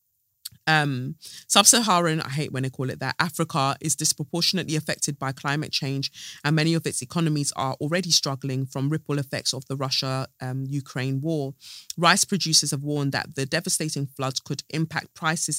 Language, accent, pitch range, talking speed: English, British, 135-160 Hz, 165 wpm